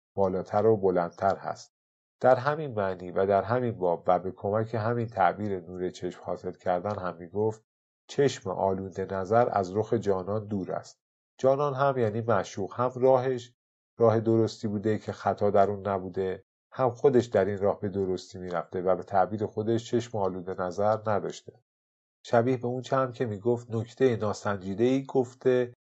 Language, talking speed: Persian, 165 wpm